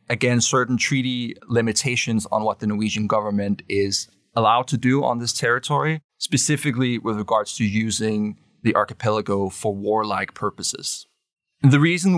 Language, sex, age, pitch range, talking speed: English, male, 20-39, 105-125 Hz, 140 wpm